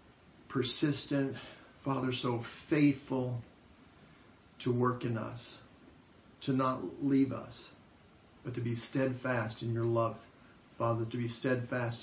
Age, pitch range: 50-69, 115-135 Hz